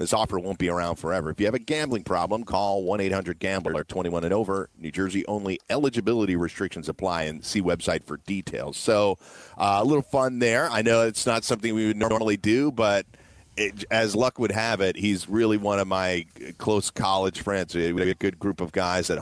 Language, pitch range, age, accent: English, 90-105 Hz, 40-59, American